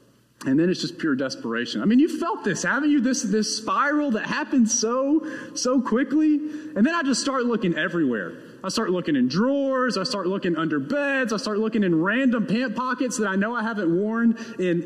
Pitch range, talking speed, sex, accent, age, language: 170-245 Hz, 210 wpm, male, American, 30-49, English